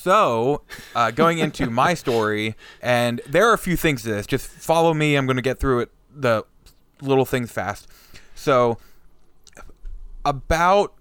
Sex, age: male, 20-39